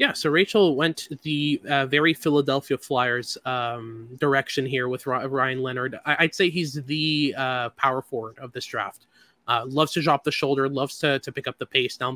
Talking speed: 190 wpm